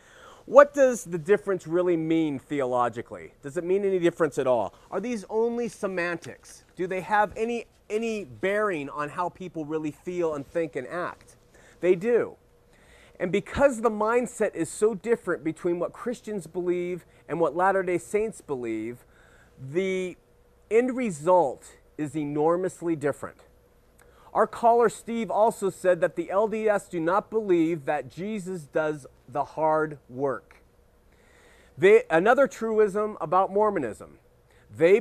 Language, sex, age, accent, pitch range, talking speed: English, male, 30-49, American, 155-215 Hz, 135 wpm